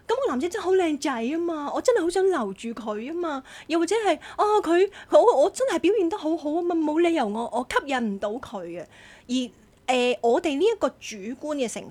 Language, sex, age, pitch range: Chinese, female, 20-39, 225-340 Hz